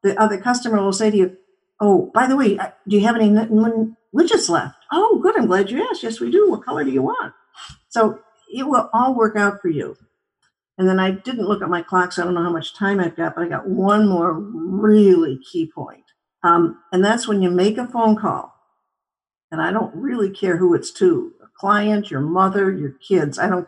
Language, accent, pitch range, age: English, American, 180-225 Hz, 60-79